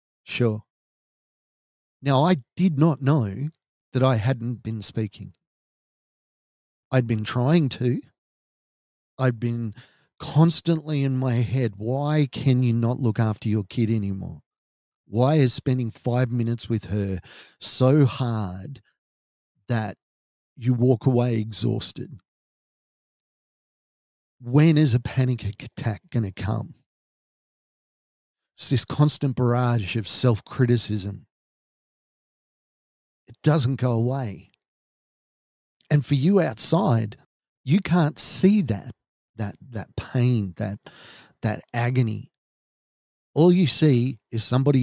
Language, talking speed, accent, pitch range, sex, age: English, 110 wpm, Australian, 110-135 Hz, male, 40-59